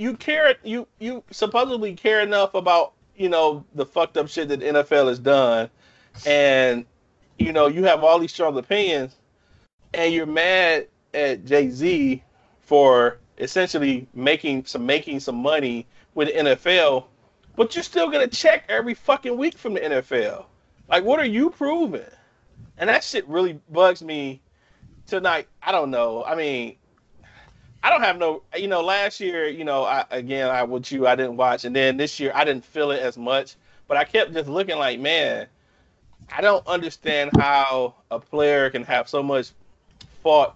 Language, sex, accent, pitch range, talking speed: English, male, American, 130-185 Hz, 175 wpm